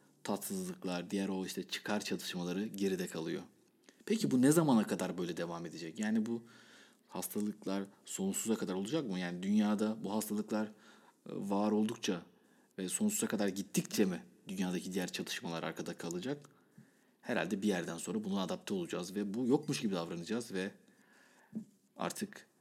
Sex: male